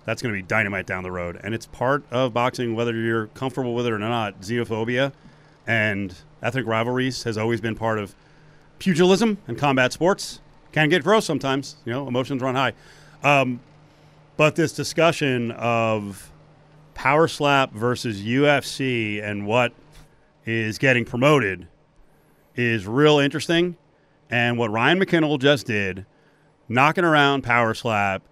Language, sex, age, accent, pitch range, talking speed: English, male, 40-59, American, 120-150 Hz, 145 wpm